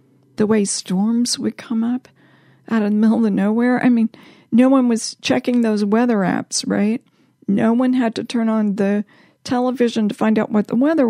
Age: 50-69